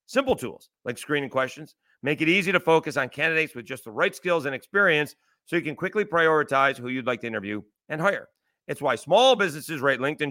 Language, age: English, 30-49